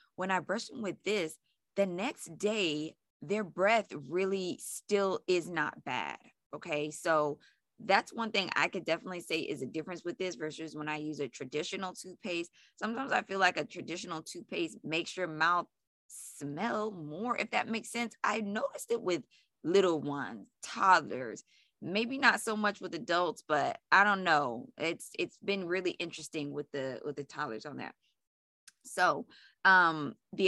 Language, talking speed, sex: English, 165 wpm, female